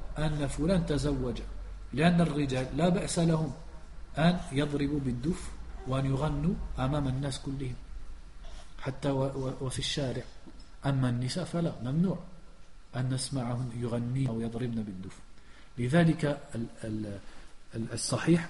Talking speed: 100 wpm